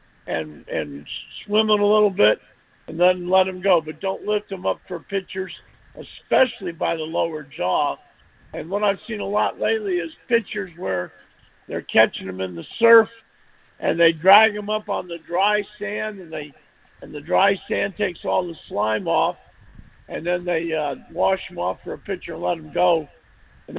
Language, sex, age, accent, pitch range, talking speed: English, male, 50-69, American, 155-195 Hz, 190 wpm